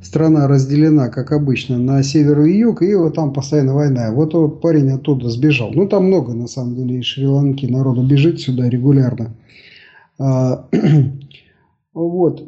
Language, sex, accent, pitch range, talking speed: Russian, male, native, 130-165 Hz, 150 wpm